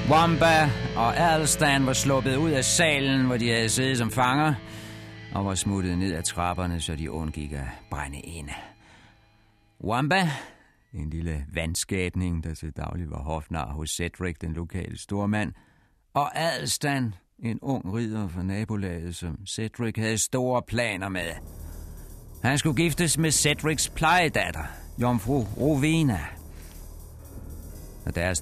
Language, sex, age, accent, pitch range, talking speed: Danish, male, 60-79, native, 80-115 Hz, 135 wpm